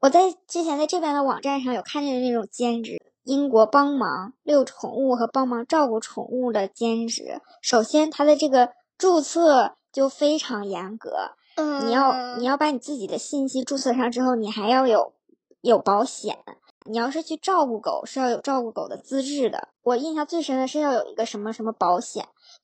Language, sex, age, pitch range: Chinese, male, 20-39, 225-285 Hz